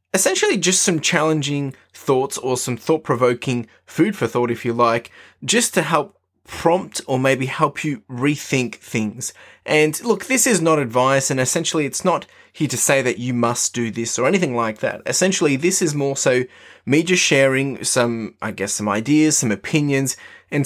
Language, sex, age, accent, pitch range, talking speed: English, male, 20-39, Australian, 120-150 Hz, 180 wpm